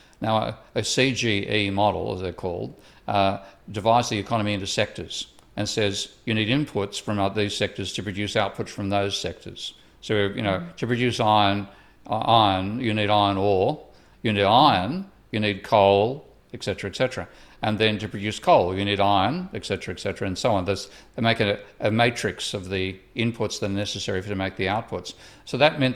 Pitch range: 95-110 Hz